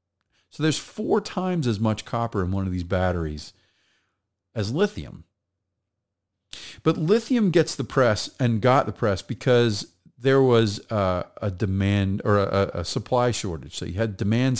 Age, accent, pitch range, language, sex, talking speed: 40-59, American, 95-125 Hz, English, male, 155 wpm